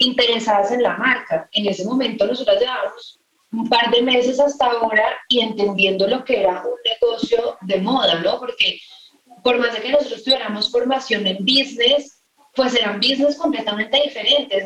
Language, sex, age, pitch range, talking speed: English, female, 30-49, 200-255 Hz, 165 wpm